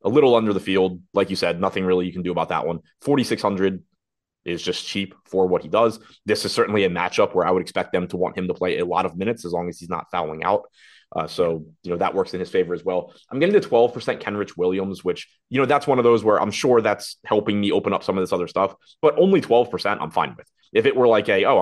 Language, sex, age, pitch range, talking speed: English, male, 20-39, 85-105 Hz, 275 wpm